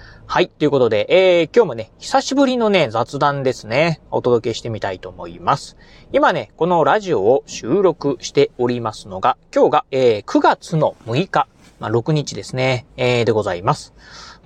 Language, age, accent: Japanese, 30-49, native